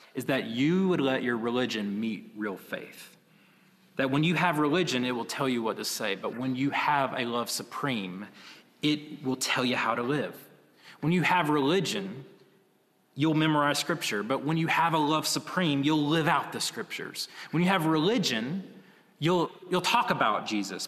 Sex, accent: male, American